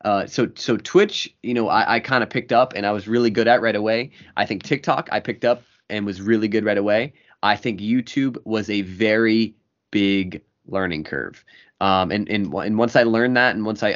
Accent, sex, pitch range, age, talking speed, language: American, male, 100-120 Hz, 20-39, 225 wpm, English